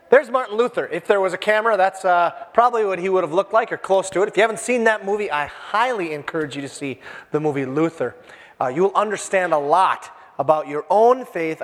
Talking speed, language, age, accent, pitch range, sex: 230 wpm, English, 30-49, American, 180-250 Hz, male